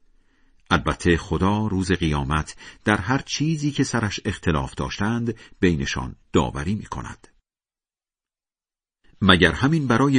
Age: 50-69